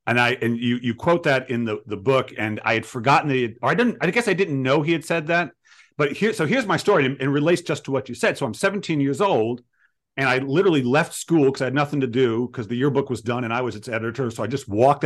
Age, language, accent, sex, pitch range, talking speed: 40-59, English, American, male, 115-150 Hz, 295 wpm